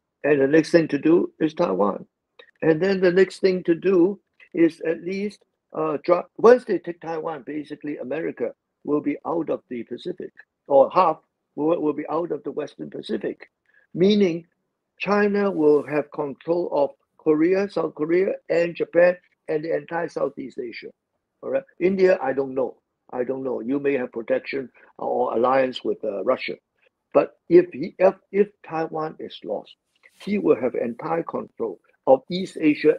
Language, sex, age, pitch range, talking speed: English, male, 60-79, 150-200 Hz, 165 wpm